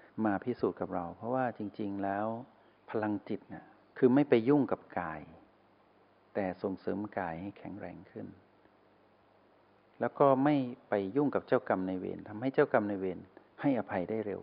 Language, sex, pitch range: Thai, male, 95-115 Hz